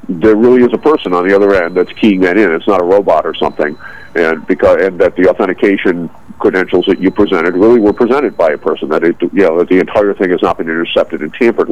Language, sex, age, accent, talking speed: English, male, 50-69, American, 250 wpm